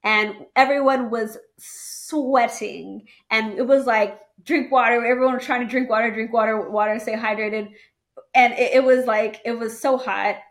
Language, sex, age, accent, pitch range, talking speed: English, female, 20-39, American, 215-265 Hz, 170 wpm